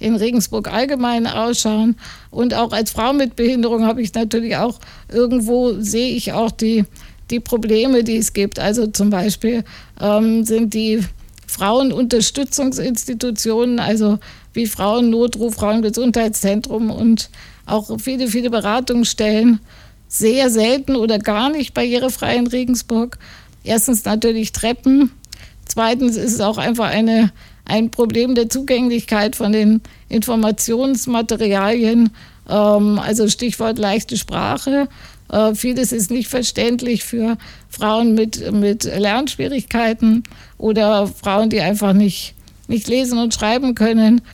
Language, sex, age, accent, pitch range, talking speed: German, female, 50-69, German, 215-240 Hz, 120 wpm